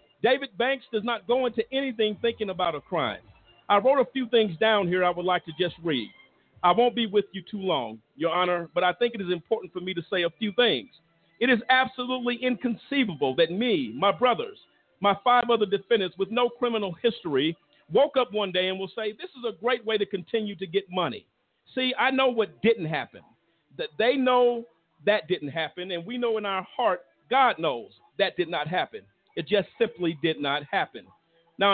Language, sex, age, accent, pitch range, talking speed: English, male, 50-69, American, 185-240 Hz, 210 wpm